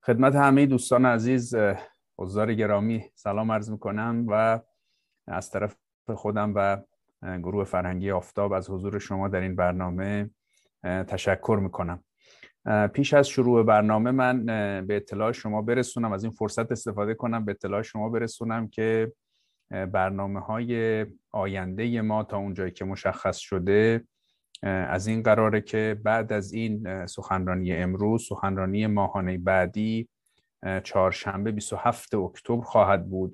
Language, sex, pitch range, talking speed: Persian, male, 95-110 Hz, 125 wpm